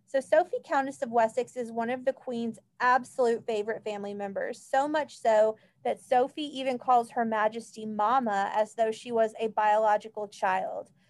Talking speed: 170 wpm